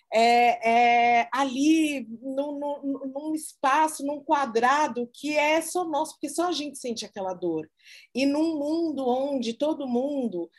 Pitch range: 200-270 Hz